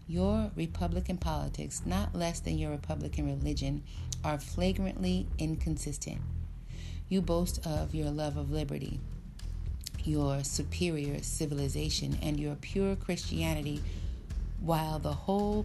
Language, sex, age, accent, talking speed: English, female, 40-59, American, 110 wpm